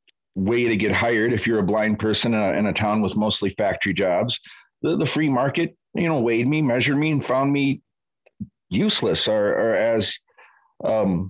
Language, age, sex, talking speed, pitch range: English, 40-59, male, 185 wpm, 105-130 Hz